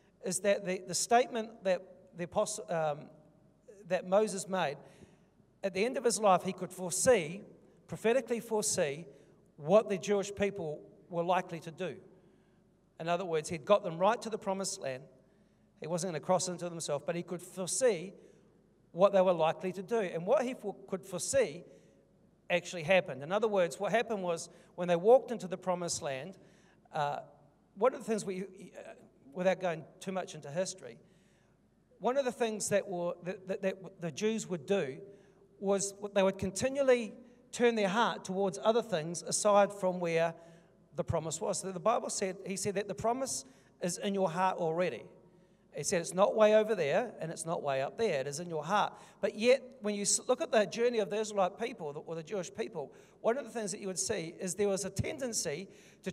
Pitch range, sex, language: 180-205 Hz, male, English